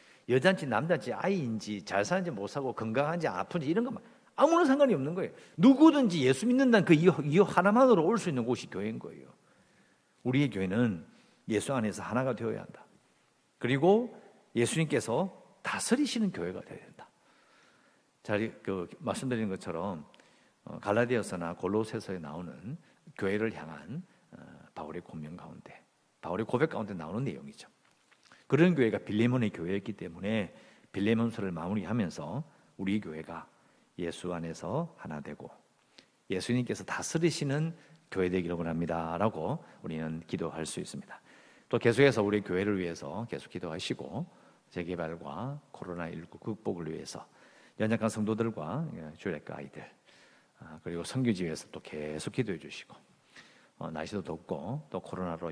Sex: male